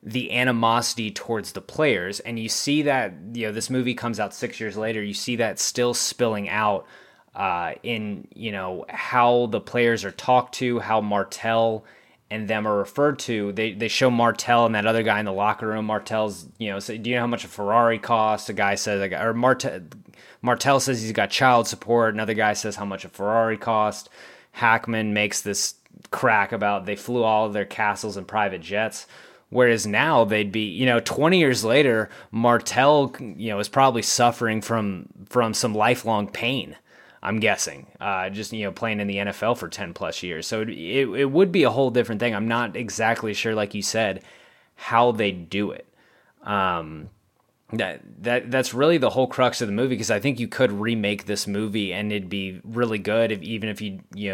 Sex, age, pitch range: male, 20-39, 105-120 Hz